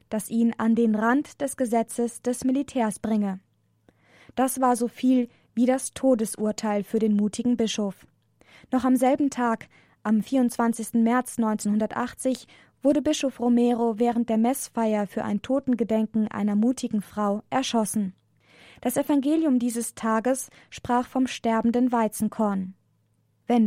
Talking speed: 130 wpm